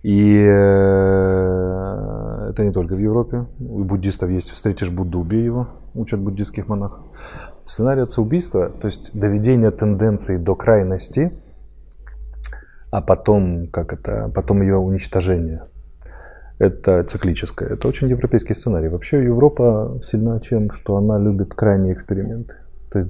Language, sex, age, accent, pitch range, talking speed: Russian, male, 20-39, native, 90-110 Hz, 125 wpm